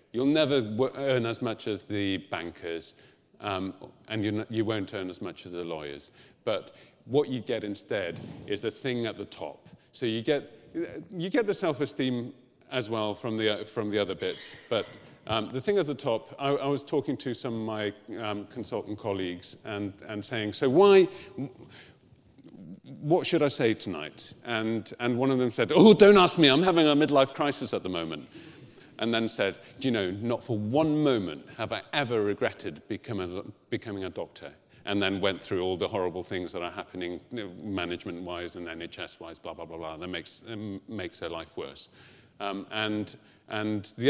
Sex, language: male, English